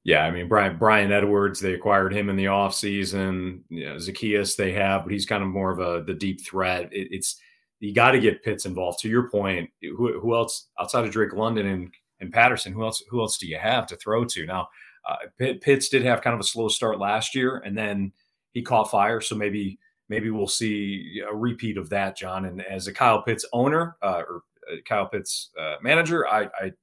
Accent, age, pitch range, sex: American, 40-59, 95-115 Hz, male